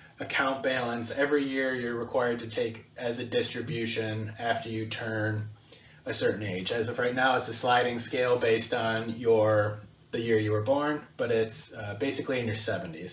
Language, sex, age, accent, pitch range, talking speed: English, male, 20-39, American, 110-135 Hz, 190 wpm